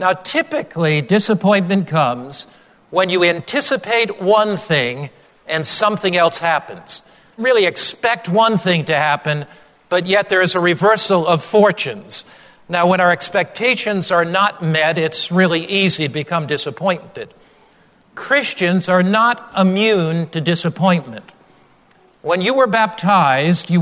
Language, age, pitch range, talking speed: English, 50-69, 165-195 Hz, 130 wpm